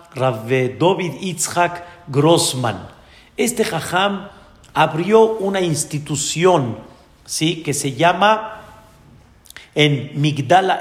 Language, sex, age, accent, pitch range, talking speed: Spanish, male, 50-69, Mexican, 150-210 Hz, 85 wpm